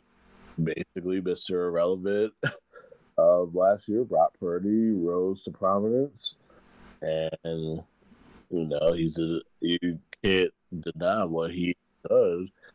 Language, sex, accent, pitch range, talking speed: English, male, American, 80-100 Hz, 100 wpm